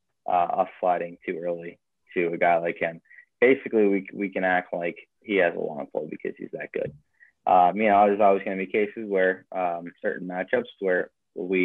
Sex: male